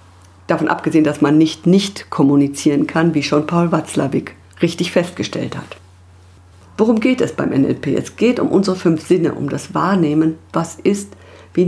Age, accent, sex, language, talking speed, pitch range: 50-69, German, female, German, 165 wpm, 150-195 Hz